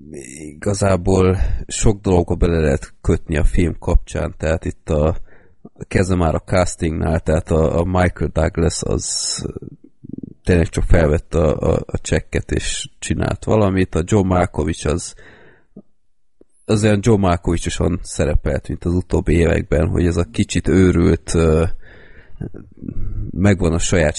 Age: 30-49